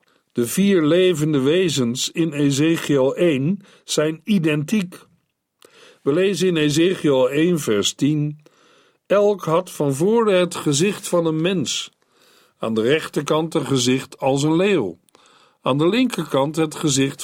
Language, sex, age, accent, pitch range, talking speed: Dutch, male, 50-69, Dutch, 140-185 Hz, 130 wpm